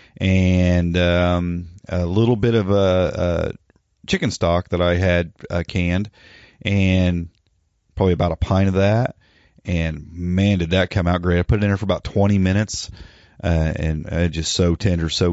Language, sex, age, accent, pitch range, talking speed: English, male, 40-59, American, 85-105 Hz, 180 wpm